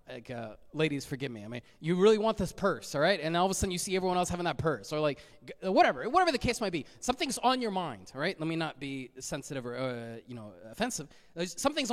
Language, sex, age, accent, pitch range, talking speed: English, male, 20-39, American, 155-215 Hz, 255 wpm